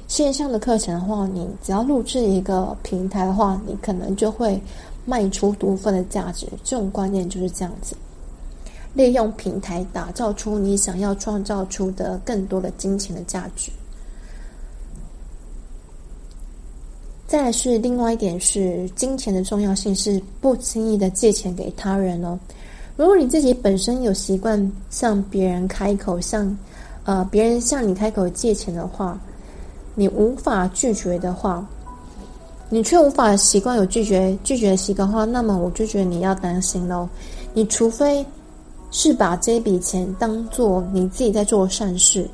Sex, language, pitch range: female, Chinese, 185-225 Hz